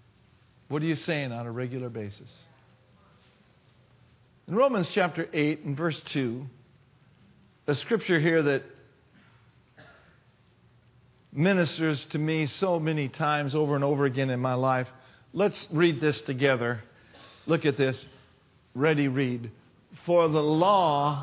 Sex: male